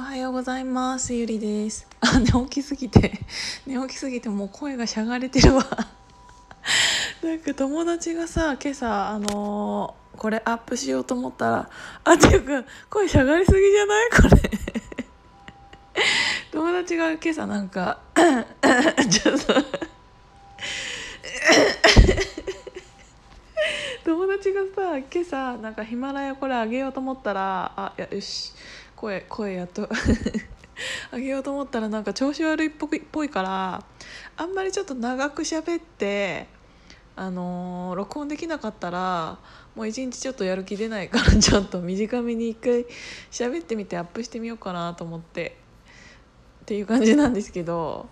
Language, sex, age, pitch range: Japanese, female, 20-39, 205-295 Hz